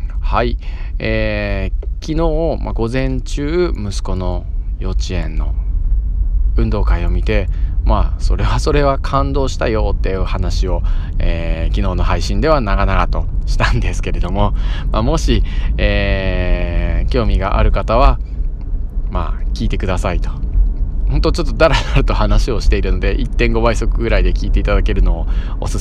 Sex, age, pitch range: male, 20-39, 80-105 Hz